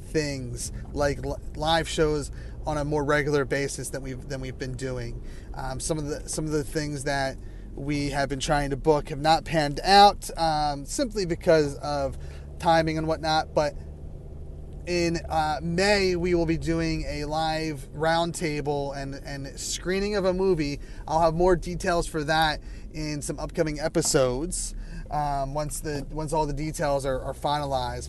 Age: 30-49